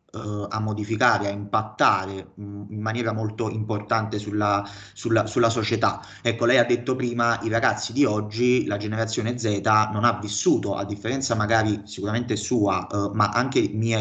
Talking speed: 155 wpm